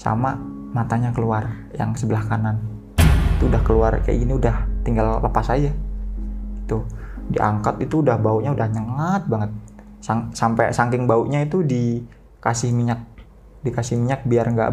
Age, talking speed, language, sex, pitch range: 20-39, 140 wpm, Indonesian, male, 110-130 Hz